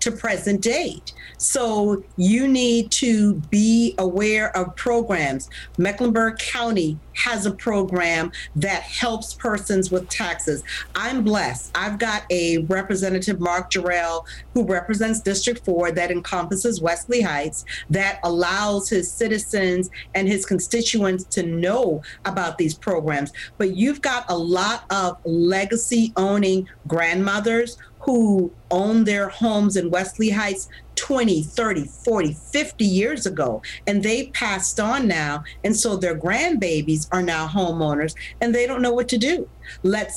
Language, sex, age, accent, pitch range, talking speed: English, female, 40-59, American, 180-225 Hz, 135 wpm